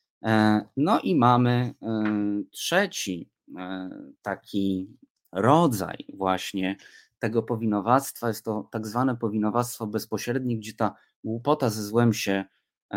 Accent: native